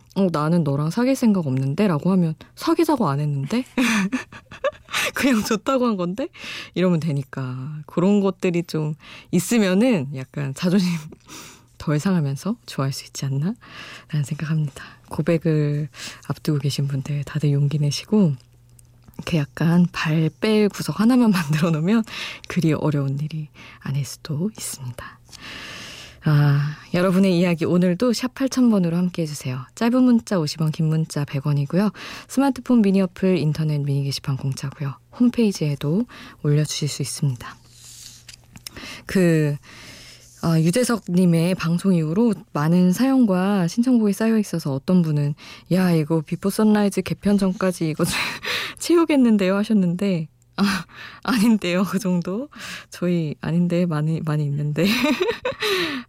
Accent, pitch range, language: native, 145-200 Hz, Korean